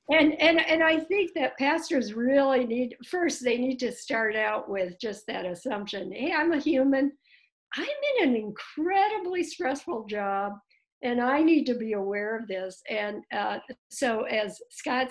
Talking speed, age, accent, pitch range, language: 165 wpm, 60-79, American, 205-280 Hz, English